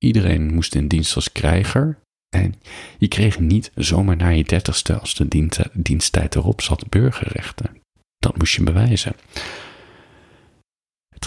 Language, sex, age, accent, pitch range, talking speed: Dutch, male, 40-59, Dutch, 80-105 Hz, 135 wpm